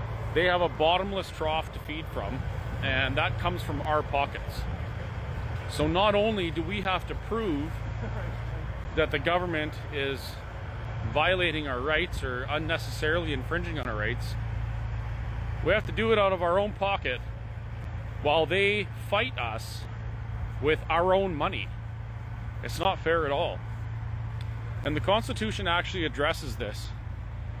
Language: English